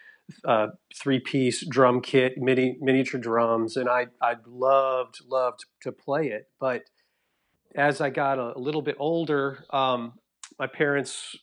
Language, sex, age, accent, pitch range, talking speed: English, male, 40-59, American, 120-140 Hz, 145 wpm